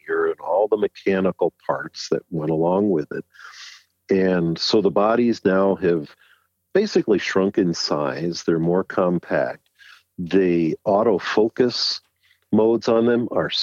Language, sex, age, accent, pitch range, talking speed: English, male, 50-69, American, 80-105 Hz, 130 wpm